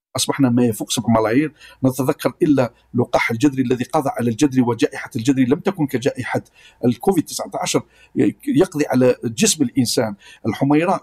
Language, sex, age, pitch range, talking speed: Arabic, male, 50-69, 130-185 Hz, 135 wpm